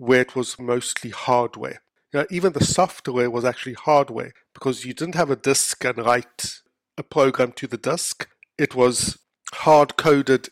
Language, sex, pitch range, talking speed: English, male, 120-150 Hz, 155 wpm